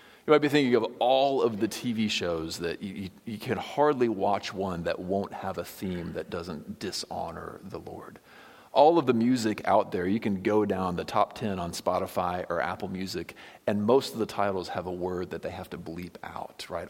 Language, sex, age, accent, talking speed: English, male, 40-59, American, 215 wpm